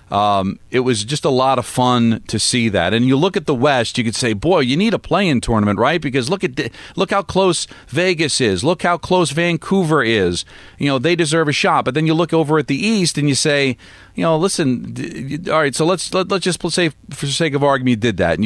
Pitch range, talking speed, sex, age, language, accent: 100-145 Hz, 265 wpm, male, 40-59, English, American